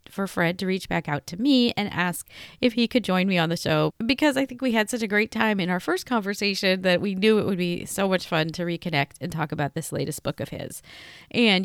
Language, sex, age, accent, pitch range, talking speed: English, female, 30-49, American, 165-215 Hz, 265 wpm